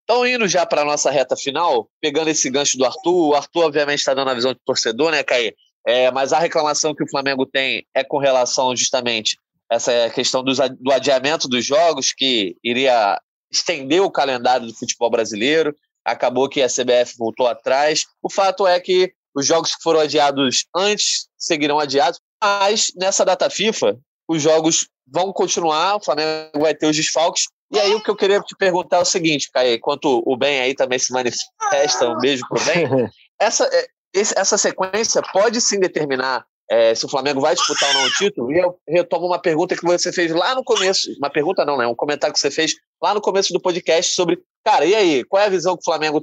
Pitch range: 135-185 Hz